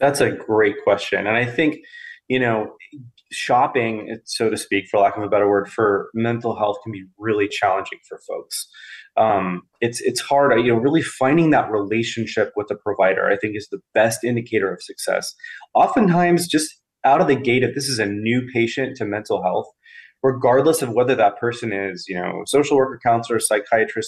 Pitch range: 110-145 Hz